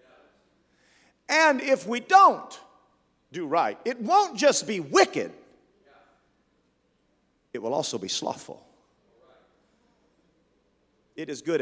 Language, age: English, 40-59